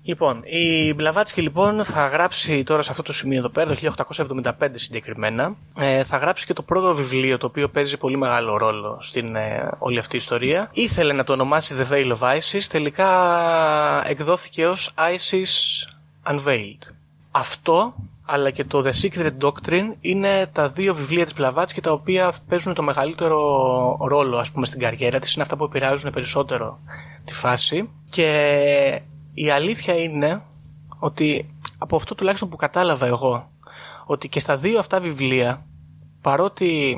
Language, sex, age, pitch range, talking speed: Greek, male, 20-39, 130-170 Hz, 155 wpm